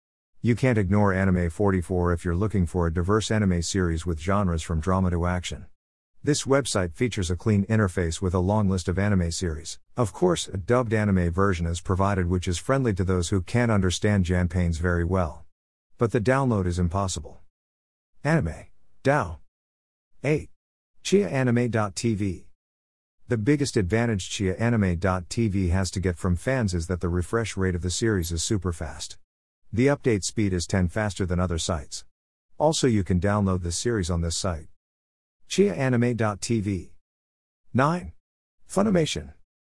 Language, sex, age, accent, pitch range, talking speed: English, male, 50-69, American, 85-110 Hz, 155 wpm